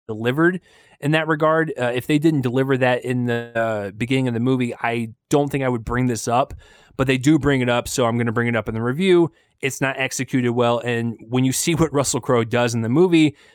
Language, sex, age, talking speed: English, male, 20-39, 250 wpm